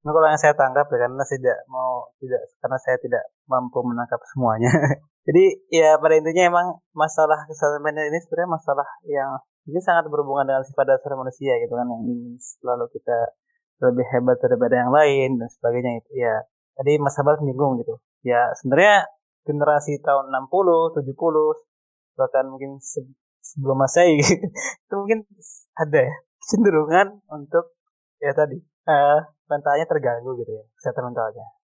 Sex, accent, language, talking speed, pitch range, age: male, native, Indonesian, 155 wpm, 130-170 Hz, 20-39